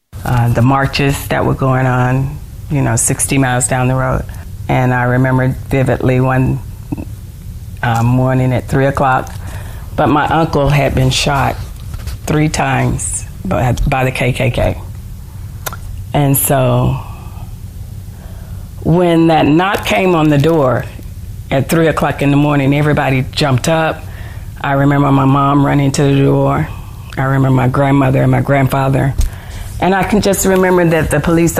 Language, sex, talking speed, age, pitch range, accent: English, female, 145 wpm, 40-59, 100-140 Hz, American